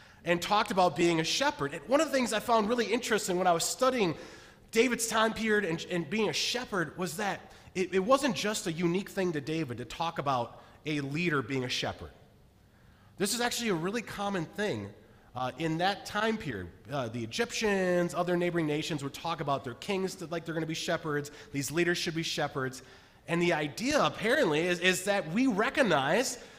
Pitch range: 125-205 Hz